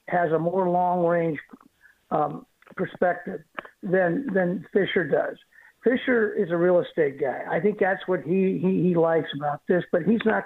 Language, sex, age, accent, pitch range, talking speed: English, male, 60-79, American, 175-215 Hz, 165 wpm